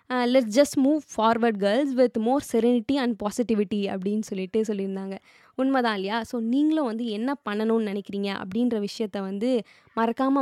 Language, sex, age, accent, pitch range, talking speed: Tamil, female, 20-39, native, 210-265 Hz, 150 wpm